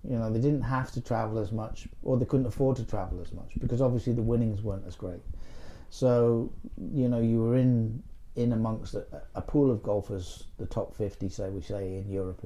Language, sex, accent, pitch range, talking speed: English, male, British, 95-110 Hz, 215 wpm